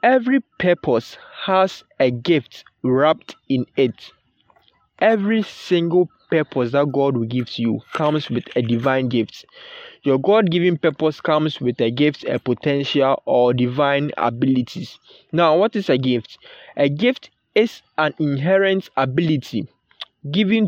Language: English